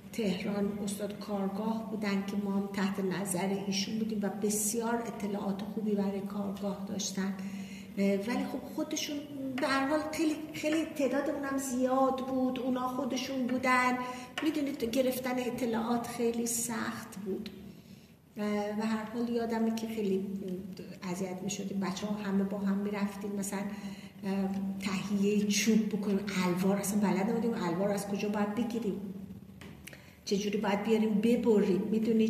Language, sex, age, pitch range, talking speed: Persian, female, 50-69, 200-240 Hz, 125 wpm